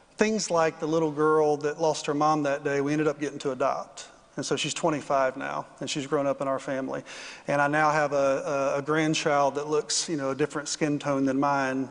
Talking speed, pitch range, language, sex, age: 235 wpm, 140-155 Hz, English, male, 40-59